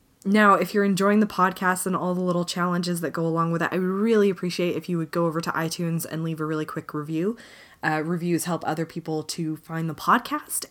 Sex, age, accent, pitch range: female, 20-39, American, 160-190 Hz